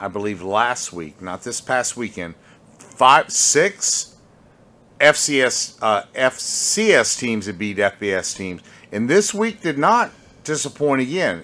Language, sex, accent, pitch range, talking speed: English, male, American, 100-135 Hz, 130 wpm